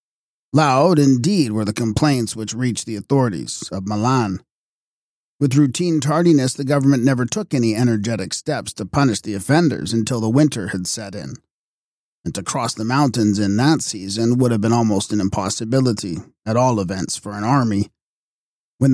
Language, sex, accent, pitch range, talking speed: English, male, American, 105-135 Hz, 165 wpm